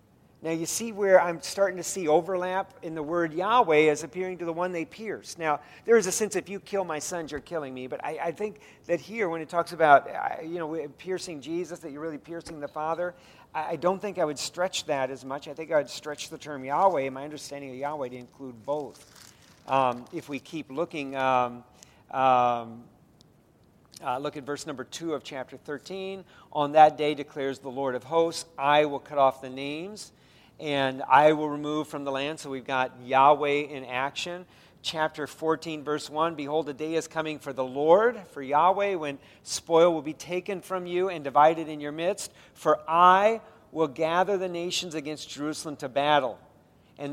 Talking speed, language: 200 wpm, English